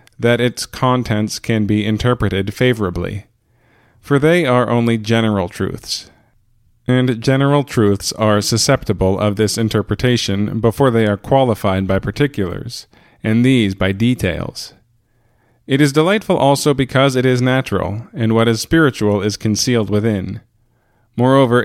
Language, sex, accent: English, male, American